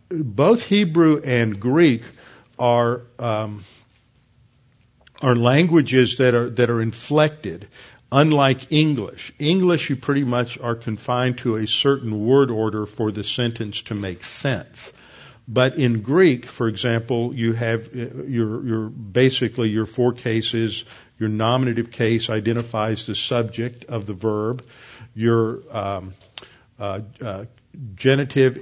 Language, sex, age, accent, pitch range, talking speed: English, male, 50-69, American, 110-130 Hz, 125 wpm